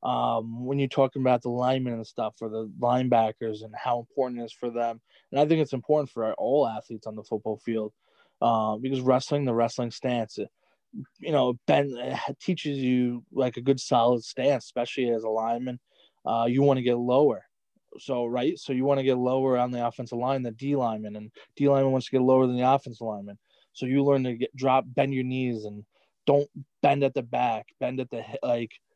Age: 20-39